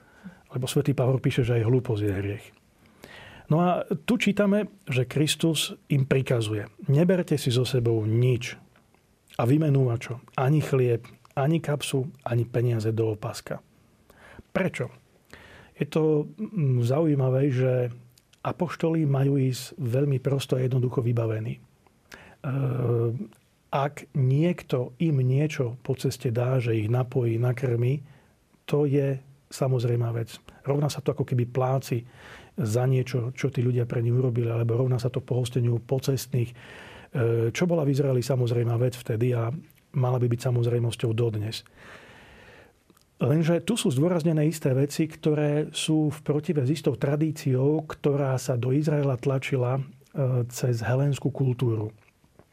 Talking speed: 130 wpm